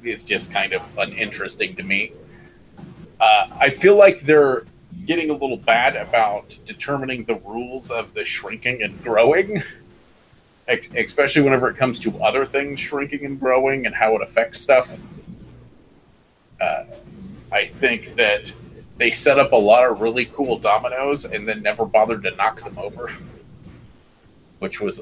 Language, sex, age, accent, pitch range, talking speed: English, male, 30-49, American, 115-150 Hz, 150 wpm